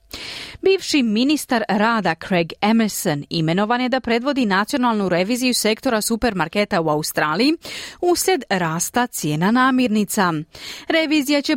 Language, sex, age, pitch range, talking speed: Croatian, female, 30-49, 190-280 Hz, 110 wpm